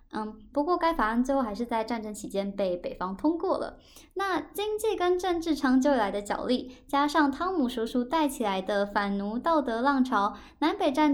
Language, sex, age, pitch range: Chinese, male, 10-29, 225-295 Hz